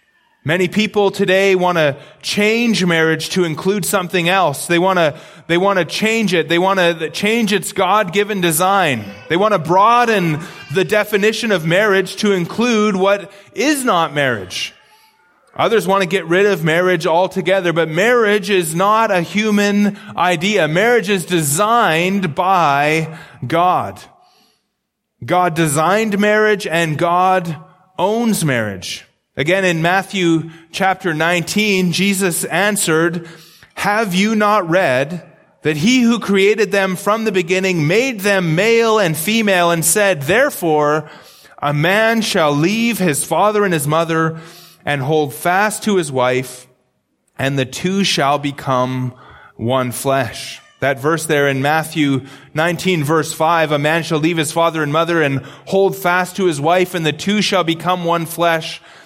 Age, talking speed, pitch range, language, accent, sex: 30-49, 145 wpm, 160-200 Hz, English, American, male